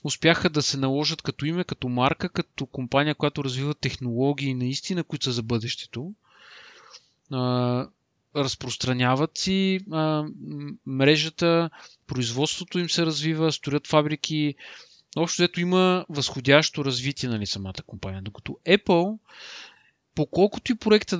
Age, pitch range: 30-49, 130-180 Hz